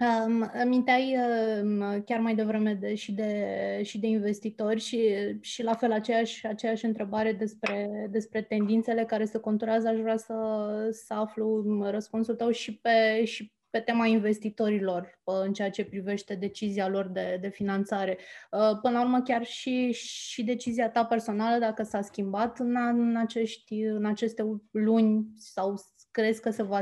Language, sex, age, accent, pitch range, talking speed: Romanian, female, 20-39, native, 205-225 Hz, 145 wpm